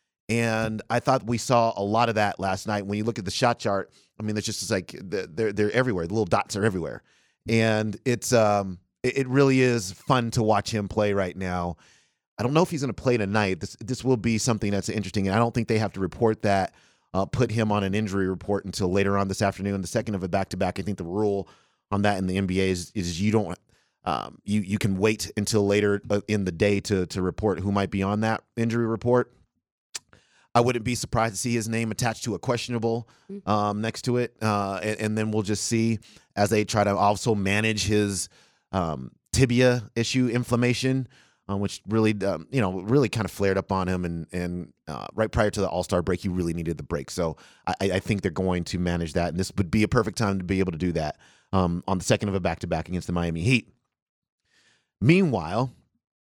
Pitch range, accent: 95-115 Hz, American